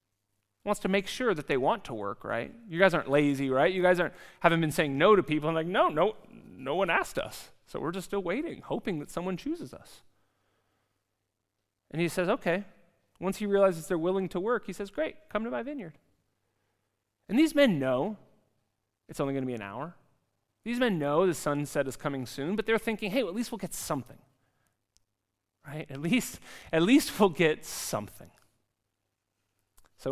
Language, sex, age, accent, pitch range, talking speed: English, male, 30-49, American, 115-180 Hz, 195 wpm